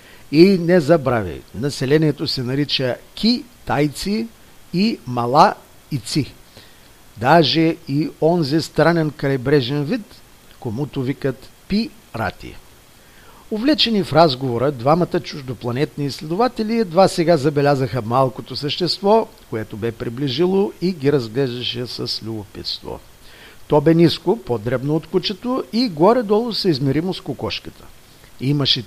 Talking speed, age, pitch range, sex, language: 105 wpm, 50-69, 120-170 Hz, male, Bulgarian